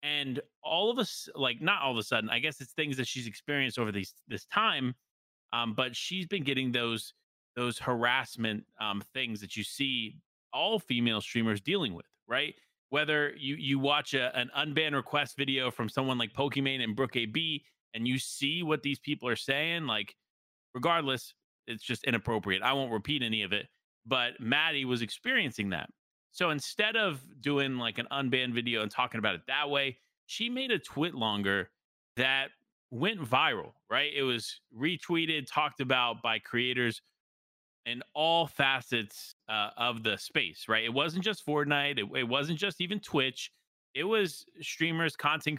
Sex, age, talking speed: male, 30-49, 175 wpm